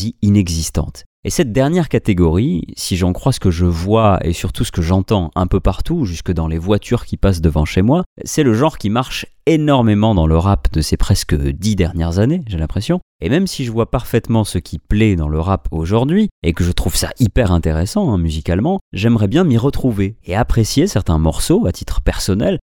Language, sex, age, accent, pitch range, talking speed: French, male, 30-49, French, 85-125 Hz, 210 wpm